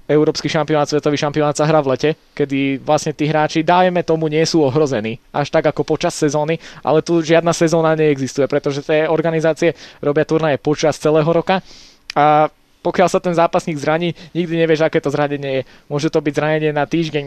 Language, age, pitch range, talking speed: Slovak, 20-39, 150-165 Hz, 185 wpm